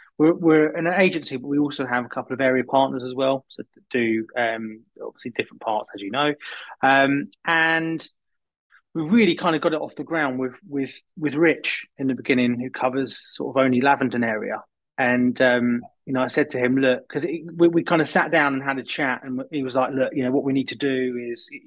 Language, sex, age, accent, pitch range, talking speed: English, male, 20-39, British, 125-145 Hz, 230 wpm